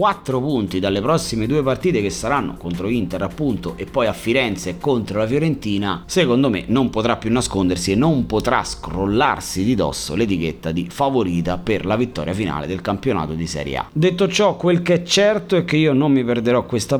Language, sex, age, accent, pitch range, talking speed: Italian, male, 30-49, native, 115-170 Hz, 195 wpm